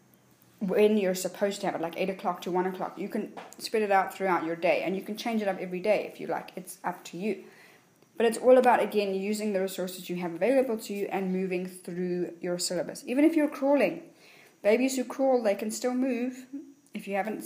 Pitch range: 190-245 Hz